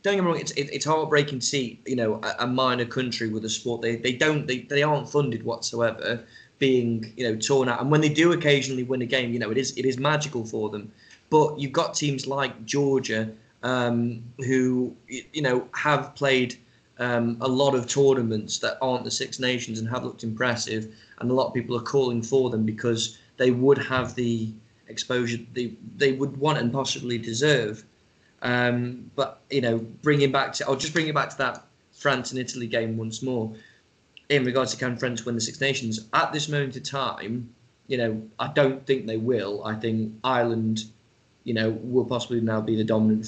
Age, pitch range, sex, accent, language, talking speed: 20-39, 115-135 Hz, male, British, English, 205 wpm